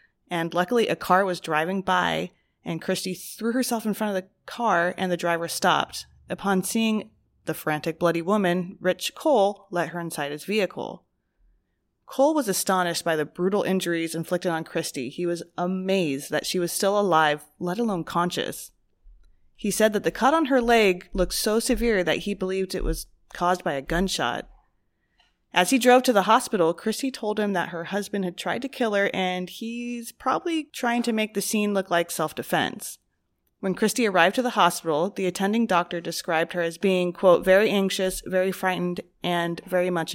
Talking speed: 185 wpm